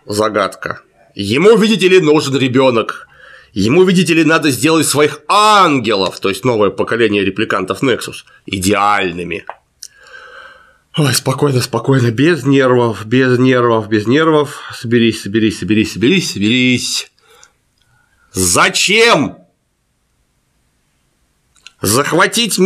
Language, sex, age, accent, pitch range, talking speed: Russian, male, 30-49, native, 115-170 Hz, 95 wpm